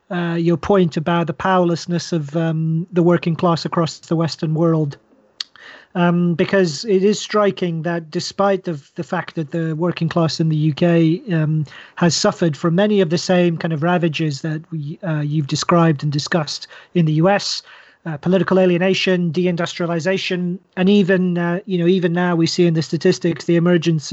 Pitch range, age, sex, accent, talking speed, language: 165-185 Hz, 40-59, male, British, 175 wpm, English